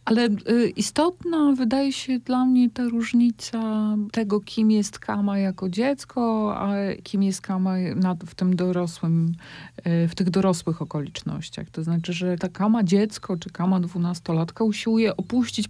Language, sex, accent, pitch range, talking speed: Polish, female, native, 190-235 Hz, 140 wpm